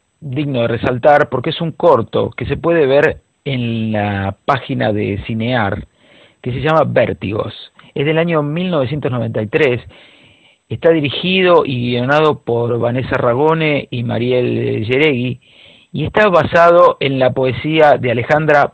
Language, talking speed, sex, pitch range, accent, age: Spanish, 135 wpm, male, 120-155 Hz, Argentinian, 50-69